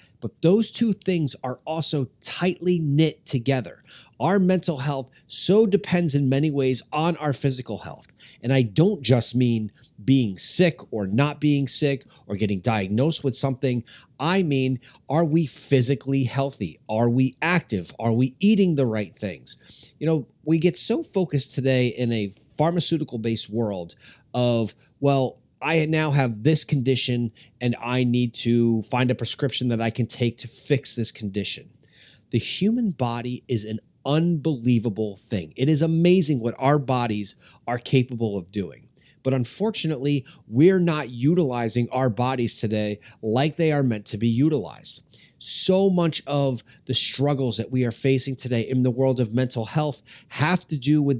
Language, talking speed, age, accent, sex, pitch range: English, 160 wpm, 30-49, American, male, 120-150 Hz